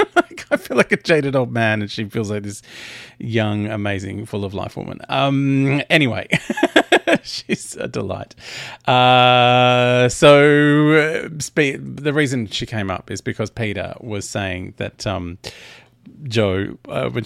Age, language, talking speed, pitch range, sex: 30-49, English, 135 wpm, 115-155 Hz, male